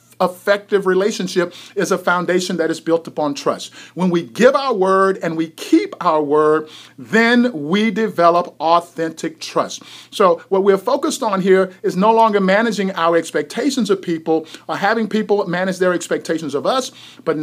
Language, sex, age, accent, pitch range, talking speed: English, male, 50-69, American, 160-200 Hz, 165 wpm